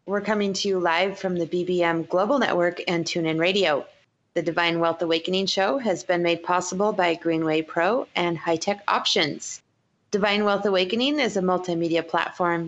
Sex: female